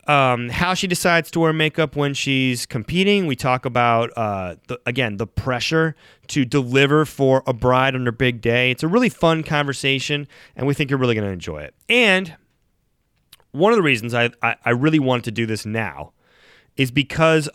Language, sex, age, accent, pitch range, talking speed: English, male, 30-49, American, 115-155 Hz, 195 wpm